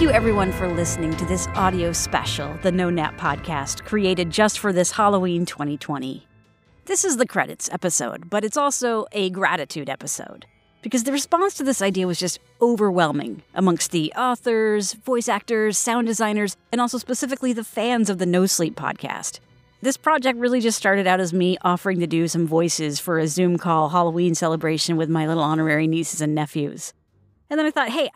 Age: 40-59